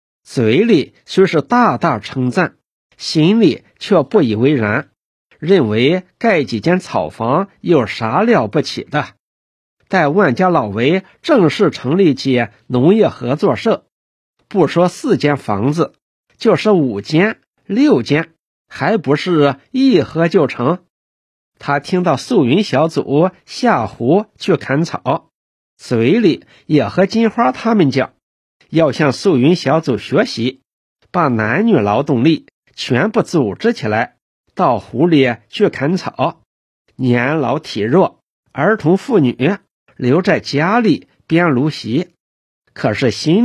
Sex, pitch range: male, 130-185 Hz